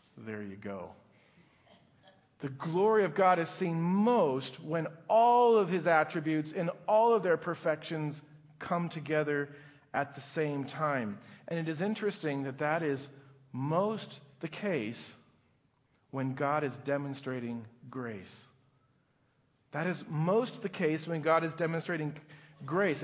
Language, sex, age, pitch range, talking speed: English, male, 40-59, 130-165 Hz, 135 wpm